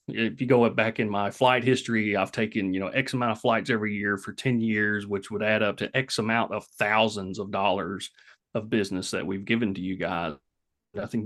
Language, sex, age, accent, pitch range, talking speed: English, male, 30-49, American, 100-120 Hz, 220 wpm